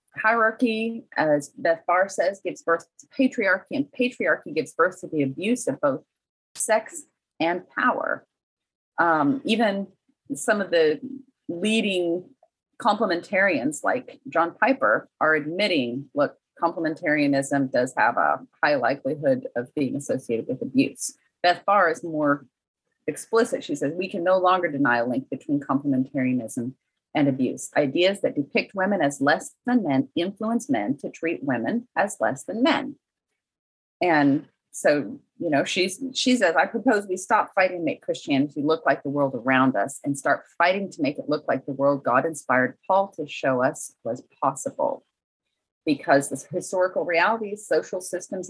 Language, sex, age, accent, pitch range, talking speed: English, female, 30-49, American, 145-230 Hz, 155 wpm